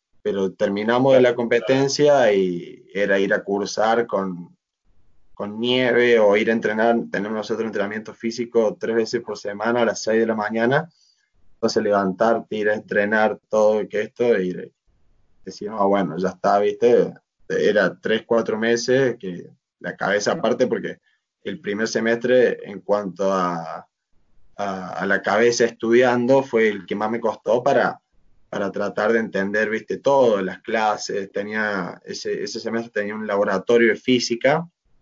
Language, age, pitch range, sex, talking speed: Spanish, 20-39, 100-120 Hz, male, 155 wpm